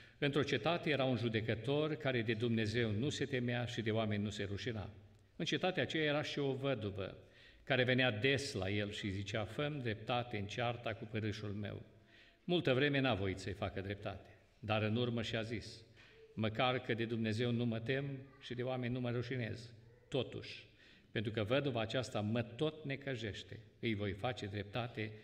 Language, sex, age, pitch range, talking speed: Romanian, male, 50-69, 105-135 Hz, 175 wpm